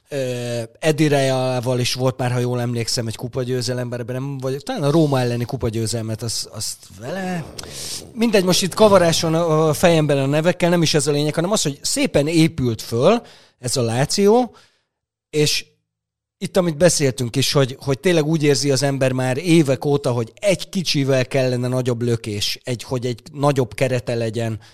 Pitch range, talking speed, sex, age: 120-155 Hz, 165 wpm, male, 30-49